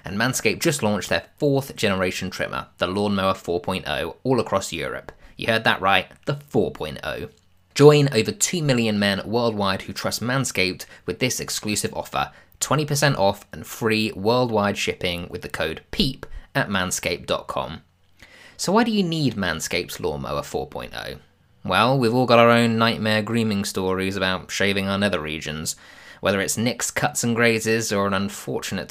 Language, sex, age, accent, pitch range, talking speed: English, male, 20-39, British, 95-120 Hz, 160 wpm